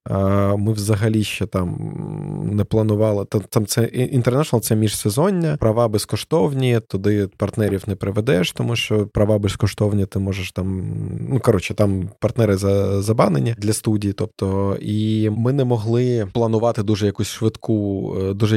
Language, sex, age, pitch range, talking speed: Ukrainian, male, 20-39, 100-115 Hz, 140 wpm